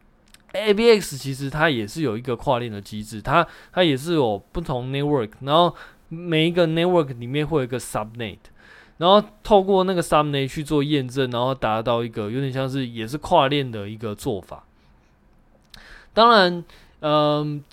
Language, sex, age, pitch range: Chinese, male, 20-39, 120-160 Hz